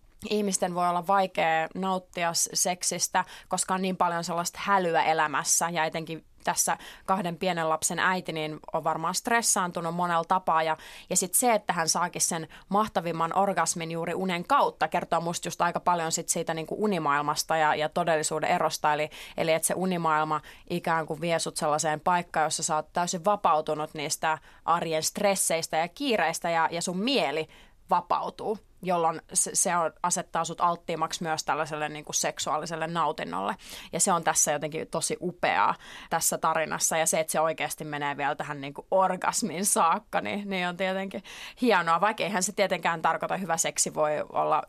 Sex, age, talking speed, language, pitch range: female, 30-49, 165 wpm, Finnish, 160-185 Hz